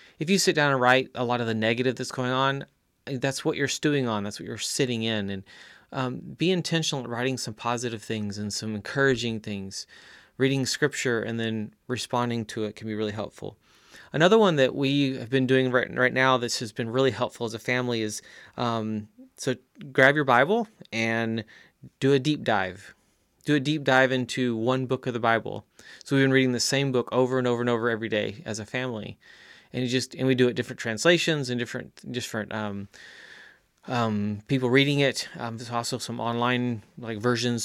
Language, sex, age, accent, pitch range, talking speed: English, male, 30-49, American, 110-130 Hz, 205 wpm